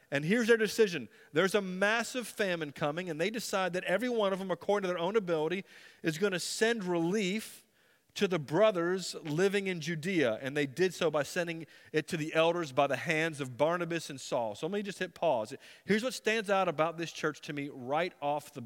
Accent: American